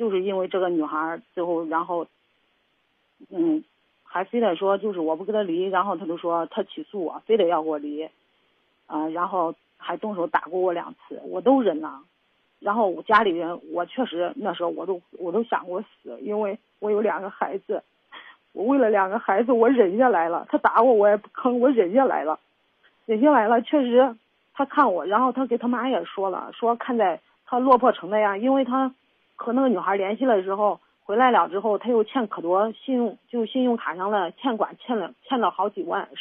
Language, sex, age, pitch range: Chinese, female, 40-59, 180-240 Hz